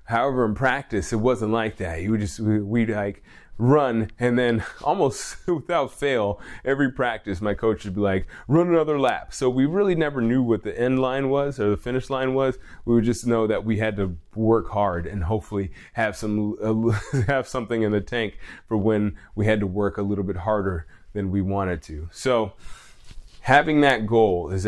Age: 20-39